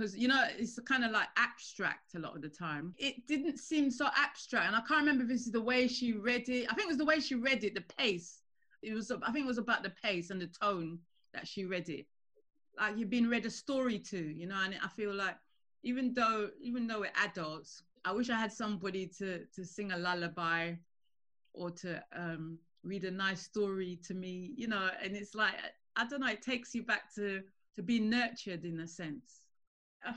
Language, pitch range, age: English, 175-235 Hz, 30-49